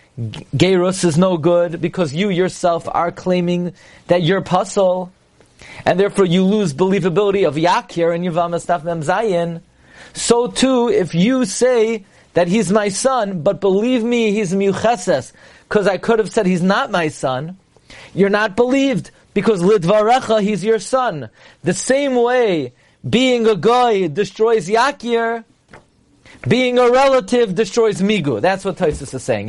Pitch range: 170-220 Hz